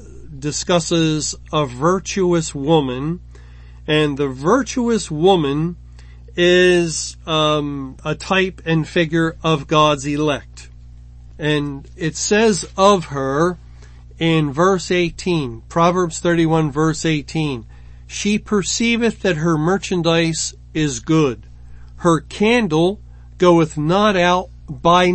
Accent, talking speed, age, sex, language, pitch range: American, 100 wpm, 40-59, male, English, 140-185 Hz